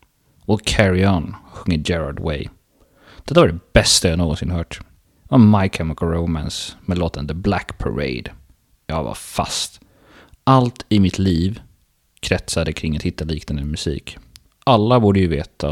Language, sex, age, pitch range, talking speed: Swedish, male, 30-49, 85-105 Hz, 150 wpm